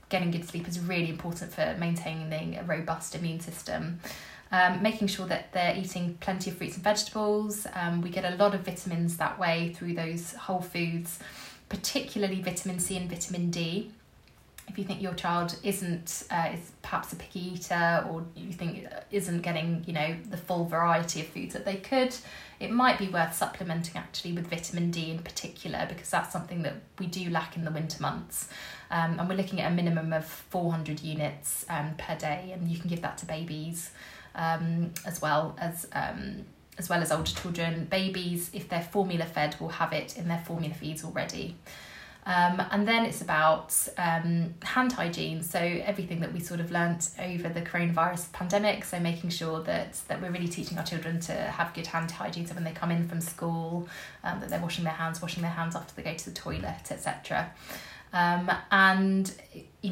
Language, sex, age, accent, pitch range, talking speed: English, female, 20-39, British, 165-190 Hz, 195 wpm